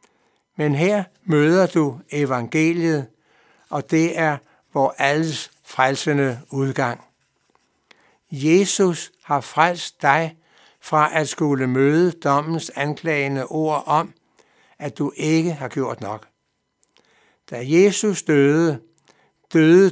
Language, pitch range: Danish, 135-165 Hz